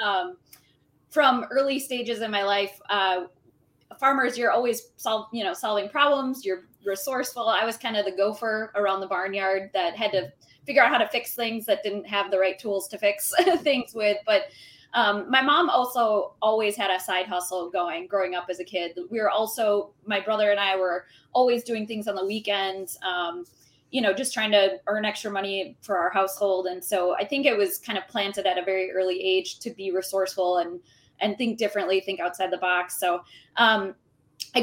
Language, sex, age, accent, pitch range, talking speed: English, female, 20-39, American, 190-230 Hz, 200 wpm